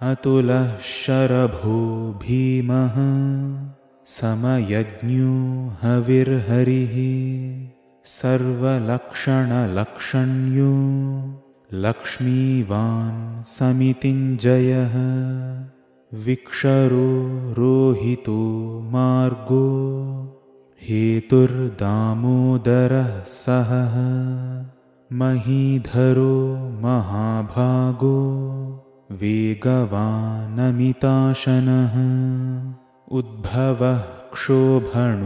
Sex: male